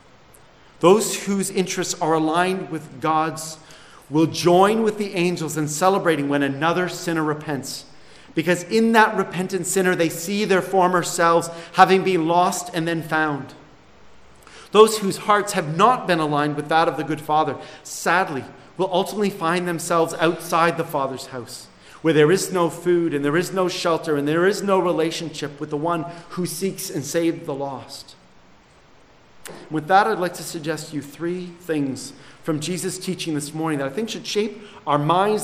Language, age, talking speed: English, 40-59, 170 wpm